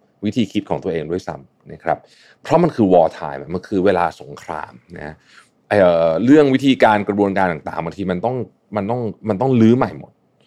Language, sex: Thai, male